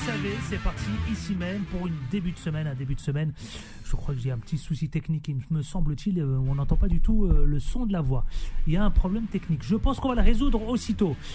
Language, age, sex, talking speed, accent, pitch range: French, 40-59, male, 260 wpm, French, 155-210 Hz